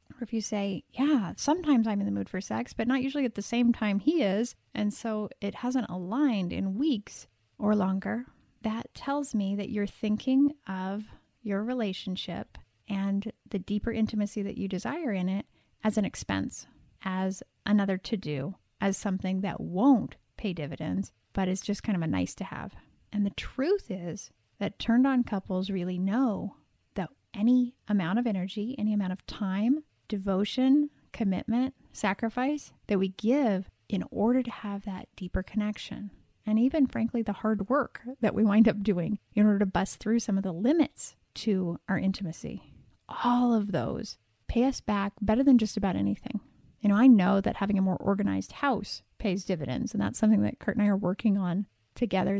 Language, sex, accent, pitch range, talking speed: English, female, American, 190-230 Hz, 180 wpm